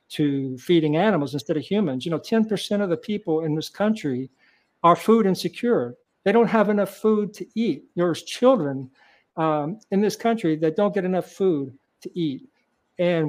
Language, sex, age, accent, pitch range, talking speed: English, male, 50-69, American, 150-185 Hz, 180 wpm